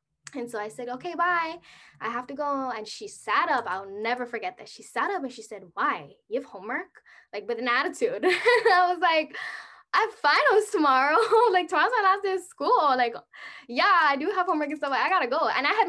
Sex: female